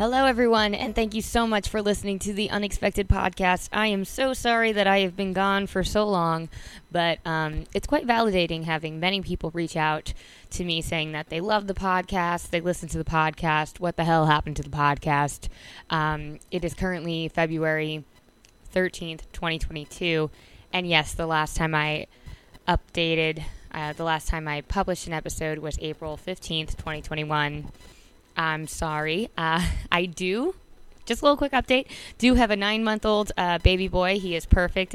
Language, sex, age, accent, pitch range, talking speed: English, female, 20-39, American, 160-195 Hz, 175 wpm